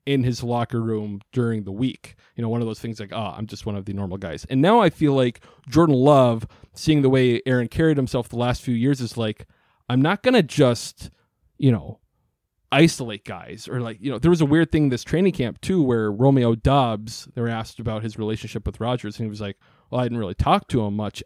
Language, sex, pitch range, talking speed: English, male, 110-145 Hz, 245 wpm